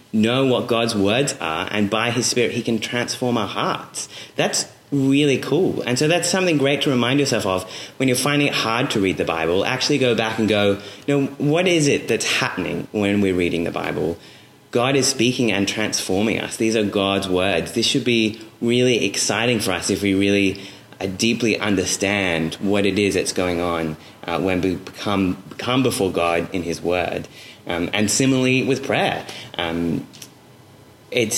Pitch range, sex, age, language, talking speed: 100-135 Hz, male, 30-49, English, 180 wpm